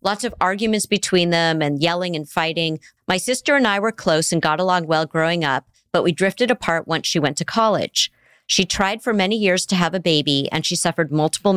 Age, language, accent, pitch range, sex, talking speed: 40-59, English, American, 150-185 Hz, female, 225 wpm